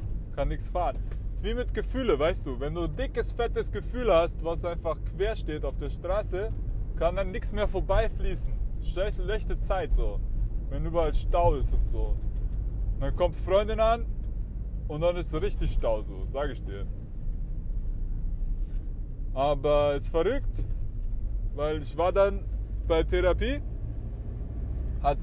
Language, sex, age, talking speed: German, male, 20-39, 145 wpm